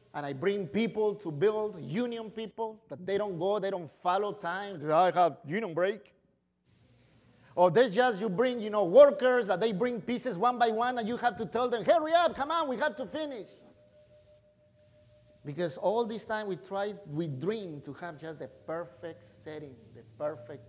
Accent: Mexican